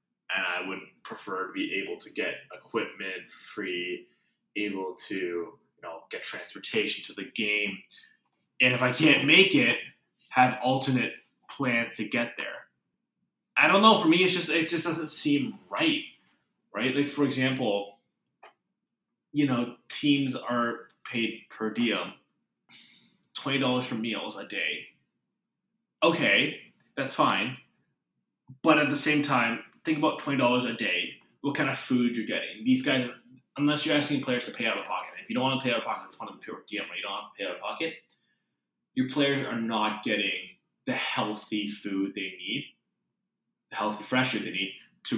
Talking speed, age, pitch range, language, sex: 175 wpm, 20-39, 115-150 Hz, English, male